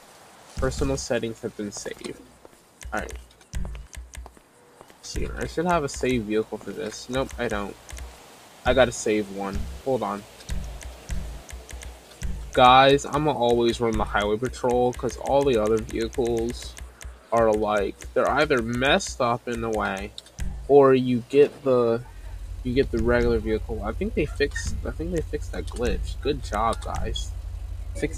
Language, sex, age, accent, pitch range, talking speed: English, male, 20-39, American, 85-120 Hz, 150 wpm